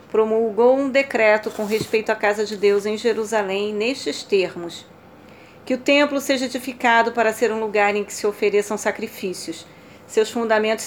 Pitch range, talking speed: 200-230 Hz, 160 wpm